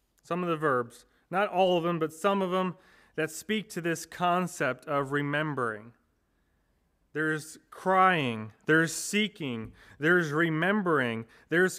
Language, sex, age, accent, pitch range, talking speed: English, male, 30-49, American, 140-190 Hz, 130 wpm